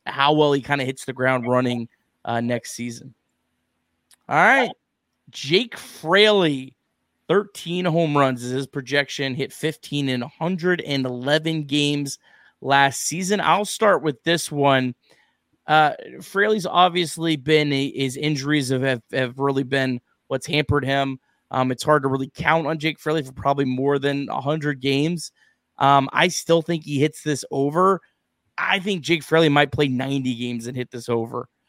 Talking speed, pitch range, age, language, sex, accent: 160 wpm, 130-155 Hz, 30-49, English, male, American